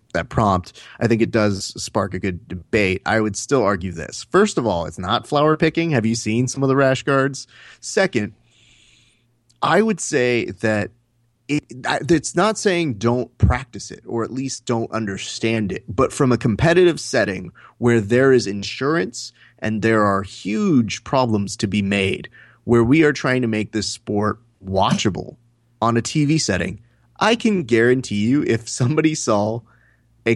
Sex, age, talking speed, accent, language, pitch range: male, 30-49, 170 wpm, American, English, 105-130 Hz